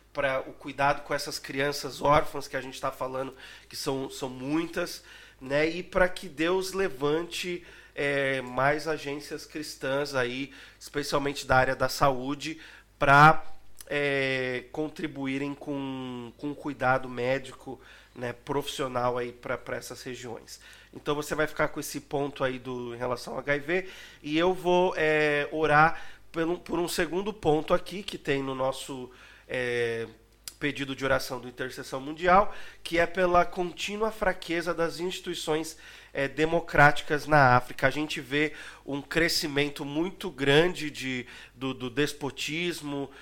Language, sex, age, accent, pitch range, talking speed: Portuguese, male, 30-49, Brazilian, 135-155 Hz, 135 wpm